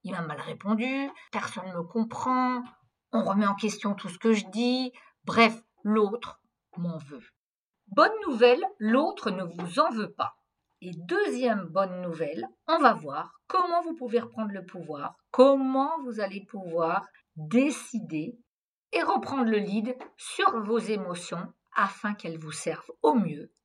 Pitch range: 175-240 Hz